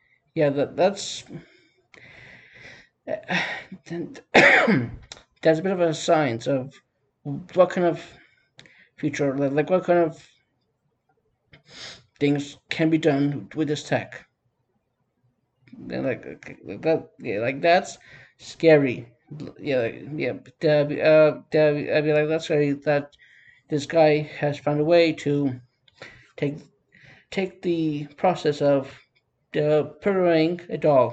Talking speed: 120 wpm